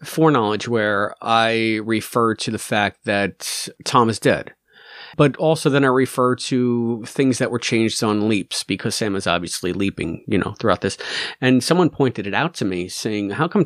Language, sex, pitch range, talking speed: English, male, 110-140 Hz, 185 wpm